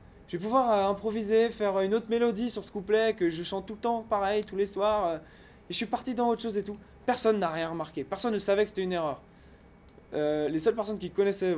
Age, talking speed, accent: 20-39, 250 wpm, French